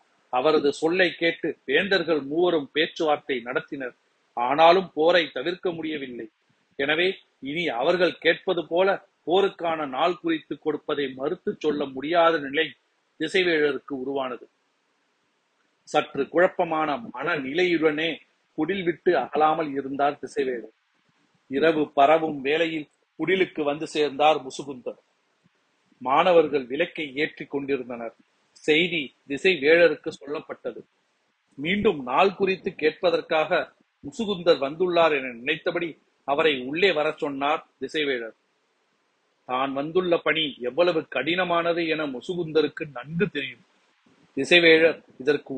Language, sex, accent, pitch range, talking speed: Tamil, male, native, 145-180 Hz, 95 wpm